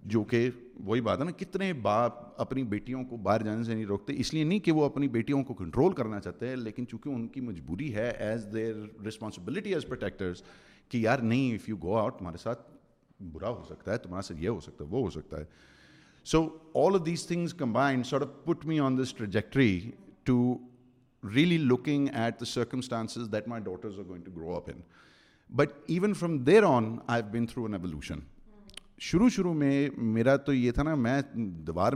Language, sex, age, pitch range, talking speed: Urdu, male, 50-69, 100-135 Hz, 175 wpm